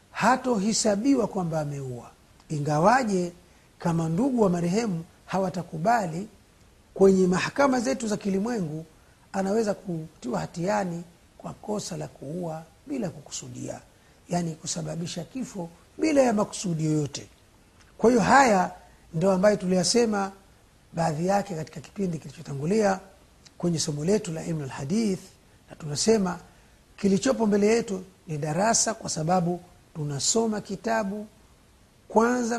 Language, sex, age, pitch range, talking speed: Swahili, male, 50-69, 160-215 Hz, 110 wpm